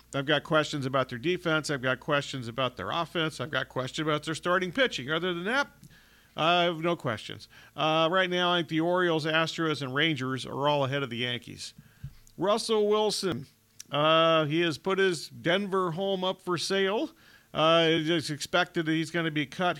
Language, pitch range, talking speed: English, 140-170 Hz, 190 wpm